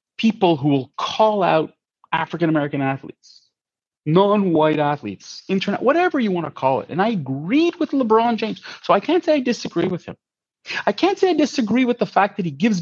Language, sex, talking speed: English, male, 190 wpm